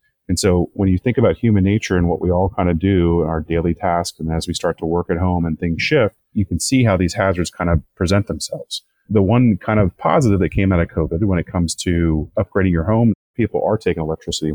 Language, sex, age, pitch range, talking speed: English, male, 30-49, 80-100 Hz, 250 wpm